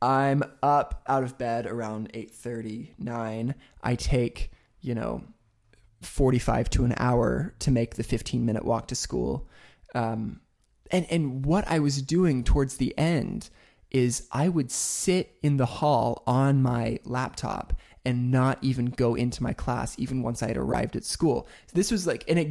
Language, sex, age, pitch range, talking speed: English, male, 20-39, 115-145 Hz, 170 wpm